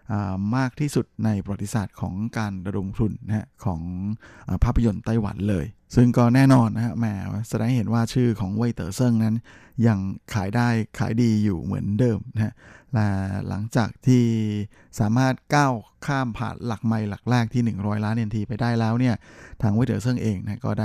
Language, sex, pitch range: Thai, male, 105-120 Hz